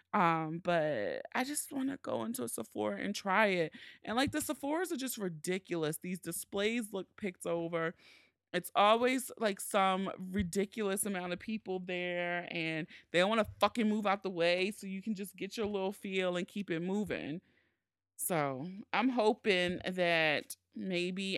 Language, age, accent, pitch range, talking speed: English, 30-49, American, 170-220 Hz, 170 wpm